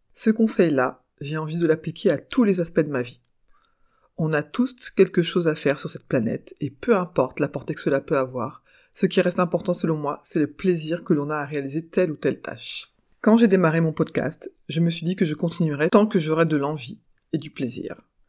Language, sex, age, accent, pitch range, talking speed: French, female, 30-49, French, 150-185 Hz, 230 wpm